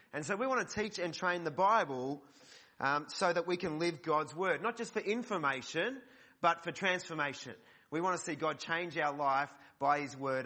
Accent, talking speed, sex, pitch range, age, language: Australian, 205 wpm, male, 145-180 Hz, 30-49, English